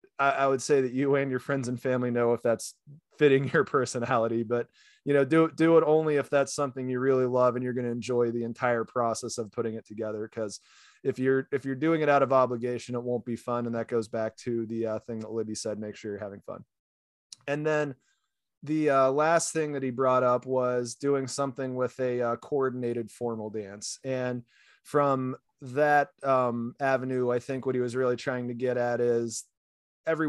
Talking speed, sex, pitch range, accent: 215 wpm, male, 115-135 Hz, American